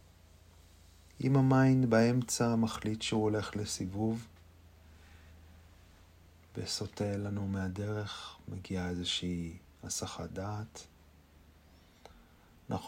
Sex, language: male, Hebrew